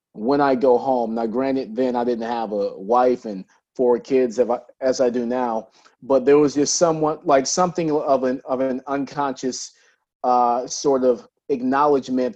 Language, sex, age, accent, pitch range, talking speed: English, male, 30-49, American, 125-140 Hz, 170 wpm